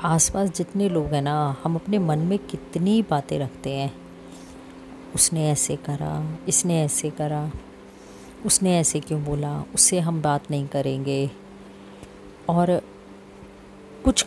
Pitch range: 135-175 Hz